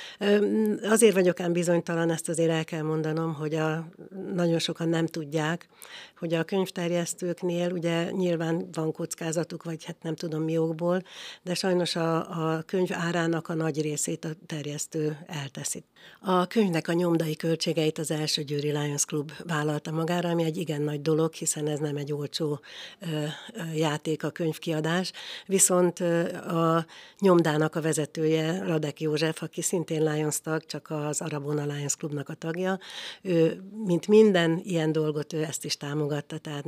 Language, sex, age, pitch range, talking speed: Hungarian, female, 60-79, 155-175 Hz, 150 wpm